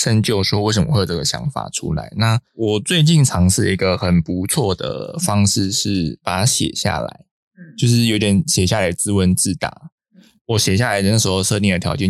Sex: male